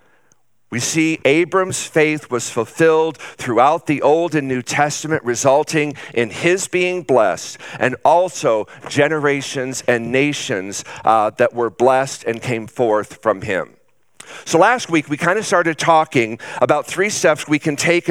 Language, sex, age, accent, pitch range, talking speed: English, male, 50-69, American, 130-160 Hz, 150 wpm